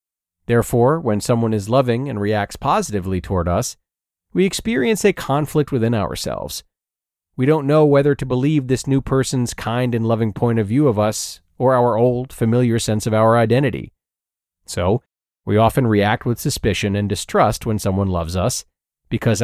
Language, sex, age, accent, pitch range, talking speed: English, male, 40-59, American, 105-135 Hz, 165 wpm